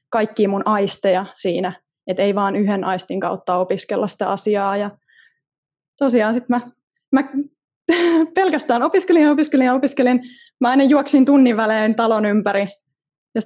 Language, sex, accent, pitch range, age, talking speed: Finnish, female, native, 205-275 Hz, 20-39, 135 wpm